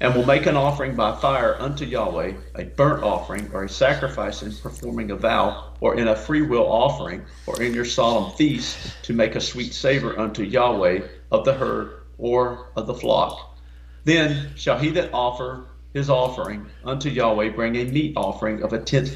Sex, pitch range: male, 105-135 Hz